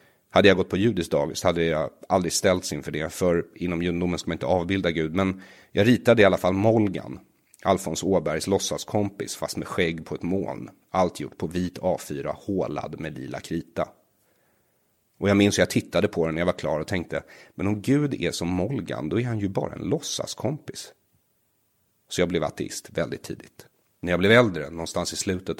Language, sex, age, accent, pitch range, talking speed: English, male, 40-59, Swedish, 80-105 Hz, 200 wpm